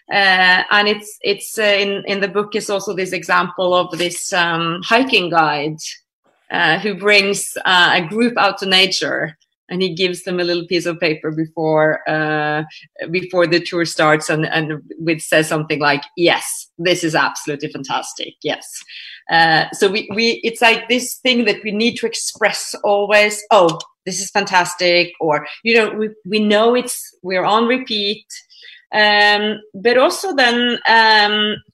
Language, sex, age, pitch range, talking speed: Hindi, female, 30-49, 180-230 Hz, 165 wpm